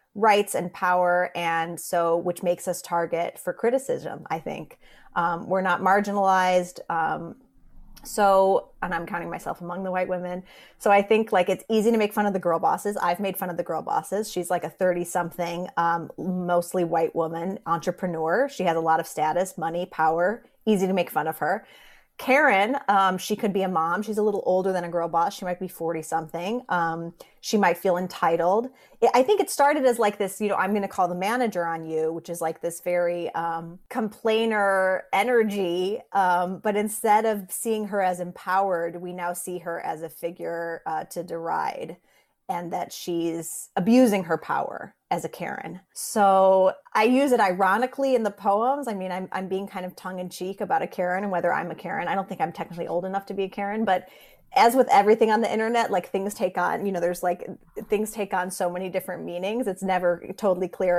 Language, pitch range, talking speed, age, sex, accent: English, 175-205 Hz, 210 wpm, 30-49, female, American